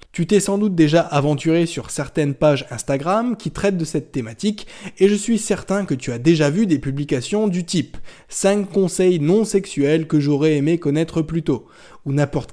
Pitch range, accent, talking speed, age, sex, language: 135-190 Hz, French, 200 wpm, 20-39, male, French